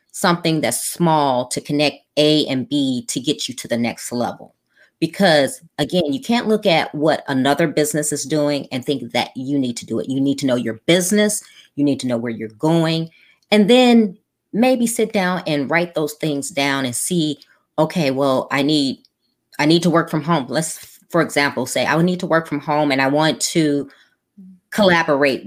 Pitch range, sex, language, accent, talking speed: 135-175 Hz, female, English, American, 205 wpm